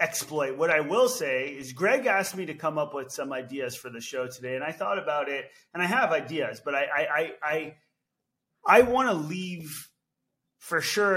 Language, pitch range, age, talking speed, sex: English, 140-180 Hz, 30-49, 205 wpm, male